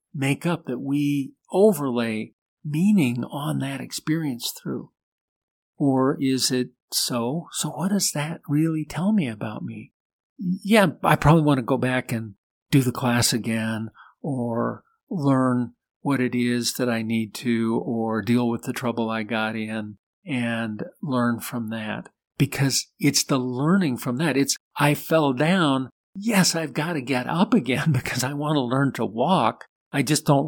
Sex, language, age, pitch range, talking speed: male, English, 50-69, 120-155 Hz, 165 wpm